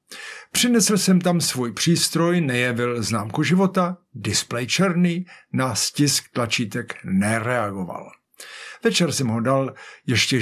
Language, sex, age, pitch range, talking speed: Czech, male, 60-79, 125-180 Hz, 110 wpm